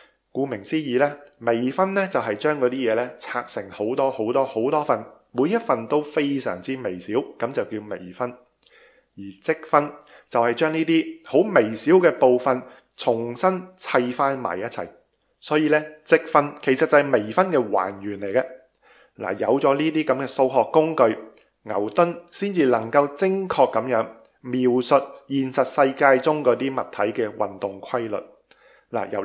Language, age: Chinese, 20-39